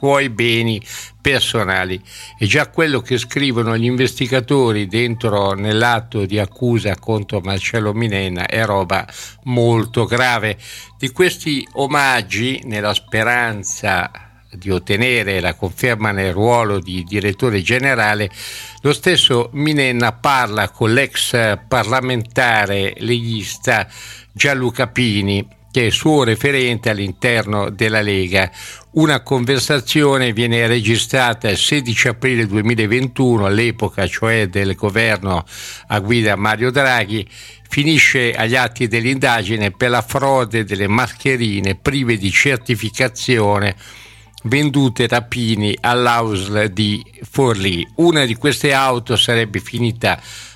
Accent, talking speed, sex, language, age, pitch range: native, 110 wpm, male, Italian, 60-79, 105-125 Hz